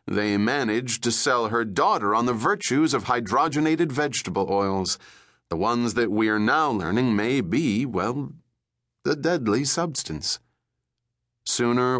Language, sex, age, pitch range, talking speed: English, male, 30-49, 110-145 Hz, 135 wpm